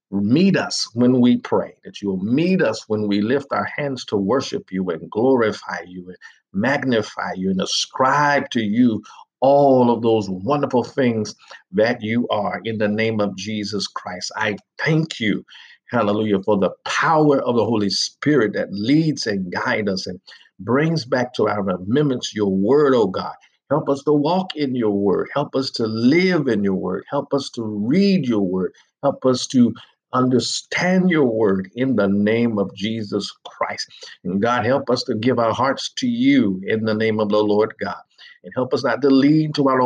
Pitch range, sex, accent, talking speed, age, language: 105-145 Hz, male, American, 190 wpm, 50-69, English